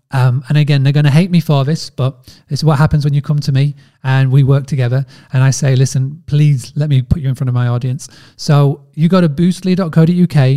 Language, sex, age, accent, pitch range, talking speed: English, male, 30-49, British, 135-160 Hz, 240 wpm